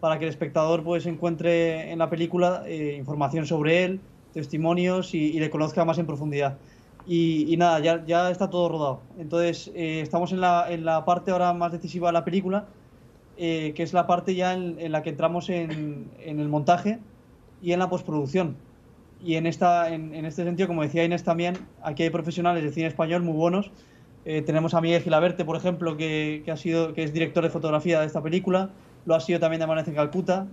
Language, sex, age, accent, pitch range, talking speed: Spanish, male, 20-39, Spanish, 155-175 Hz, 210 wpm